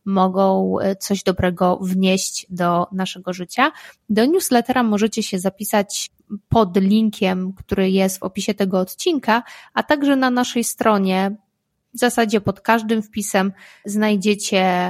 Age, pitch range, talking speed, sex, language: 20-39, 195-225 Hz, 125 wpm, female, Polish